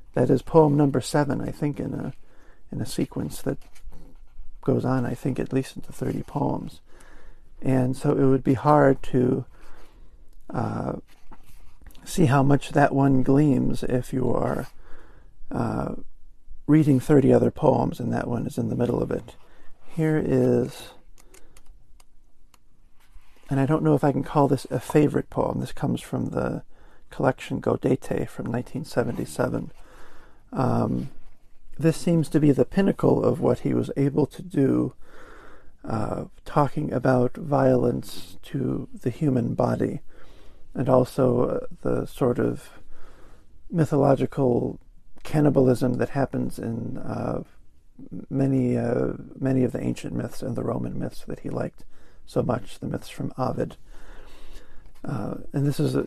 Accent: American